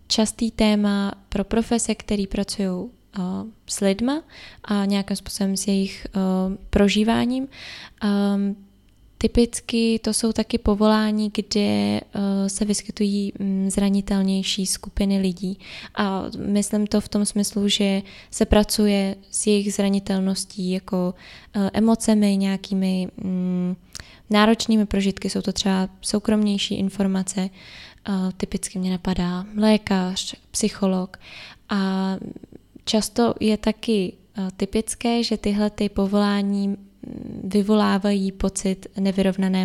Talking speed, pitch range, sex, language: 105 wpm, 195-215 Hz, female, Czech